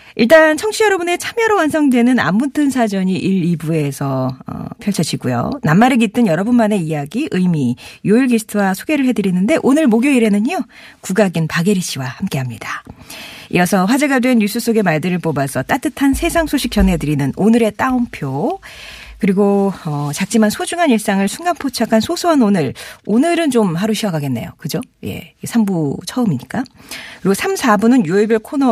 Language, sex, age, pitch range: Korean, female, 40-59, 160-245 Hz